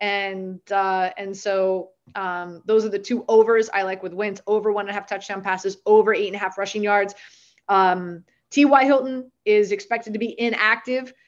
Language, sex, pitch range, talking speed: English, female, 210-235 Hz, 195 wpm